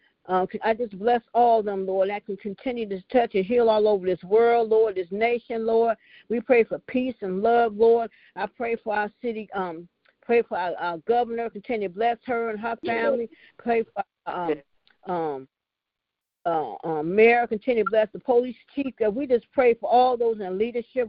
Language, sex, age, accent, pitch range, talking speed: English, female, 50-69, American, 210-240 Hz, 200 wpm